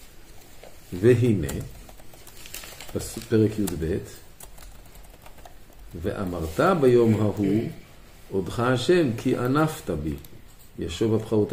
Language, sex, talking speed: Hebrew, male, 70 wpm